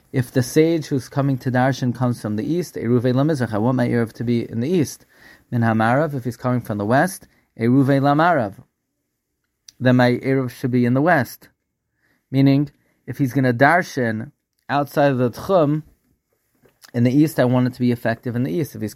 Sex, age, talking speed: male, 30-49, 185 wpm